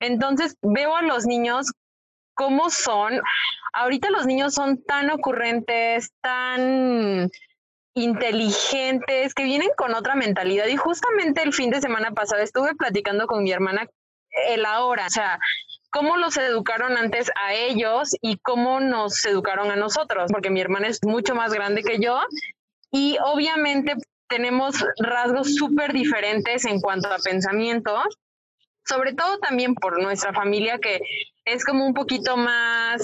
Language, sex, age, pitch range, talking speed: Spanish, female, 20-39, 225-290 Hz, 145 wpm